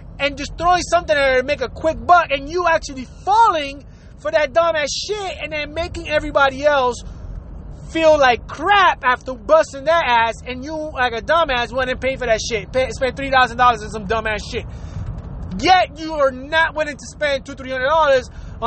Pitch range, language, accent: 230-310 Hz, English, American